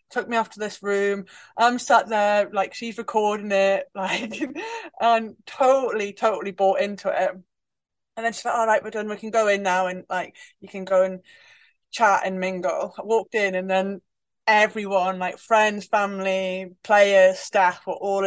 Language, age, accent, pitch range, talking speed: English, 20-39, British, 190-230 Hz, 180 wpm